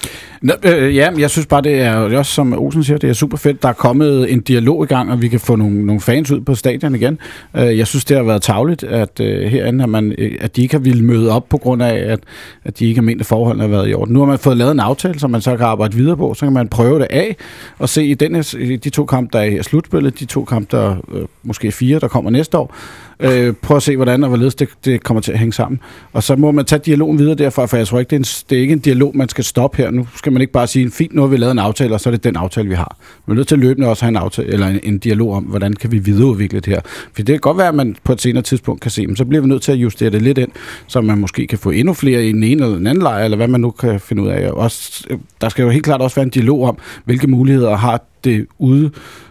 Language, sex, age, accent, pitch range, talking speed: Danish, male, 40-59, native, 115-140 Hz, 295 wpm